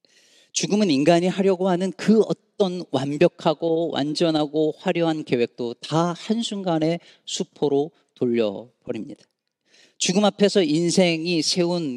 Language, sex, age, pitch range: Korean, male, 40-59, 130-185 Hz